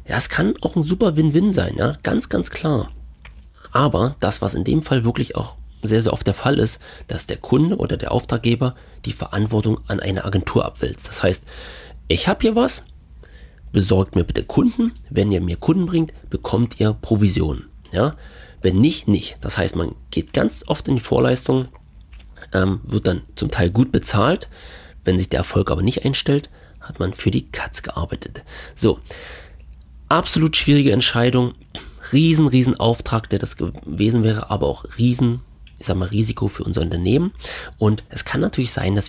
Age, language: 40-59, German